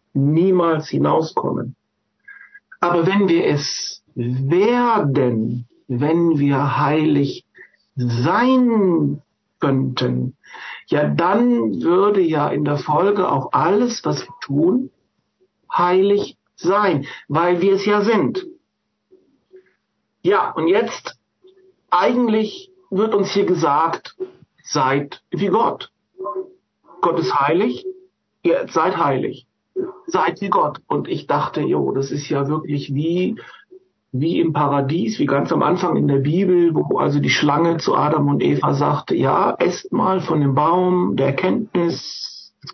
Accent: German